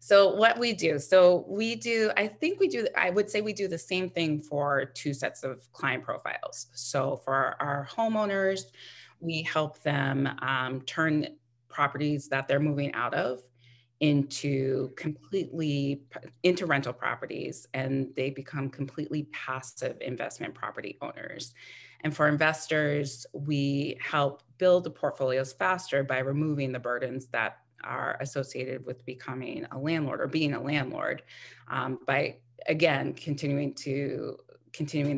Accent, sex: American, female